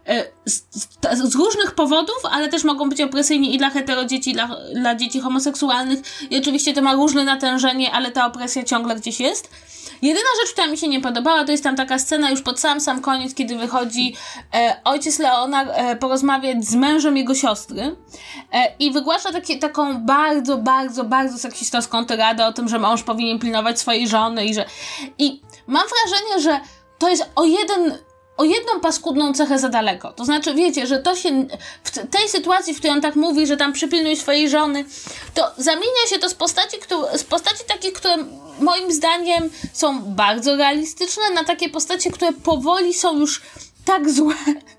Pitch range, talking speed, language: 265-335 Hz, 180 wpm, Polish